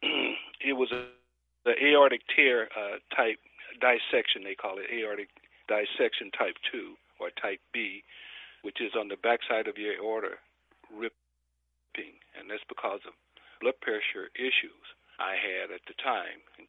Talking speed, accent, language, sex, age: 145 wpm, American, English, male, 60-79